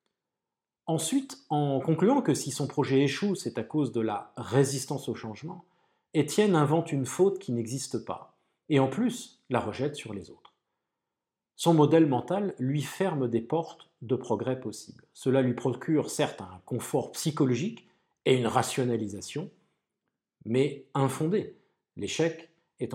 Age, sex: 40-59, male